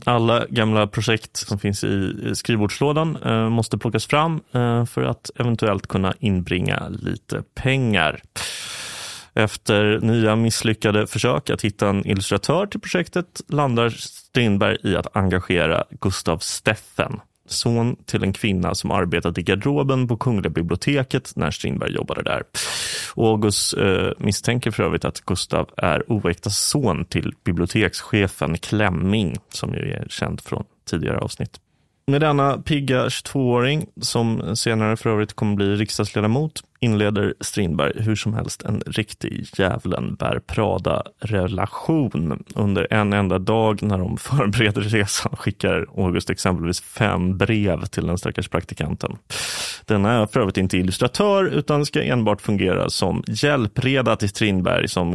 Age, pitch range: 30-49, 95-125 Hz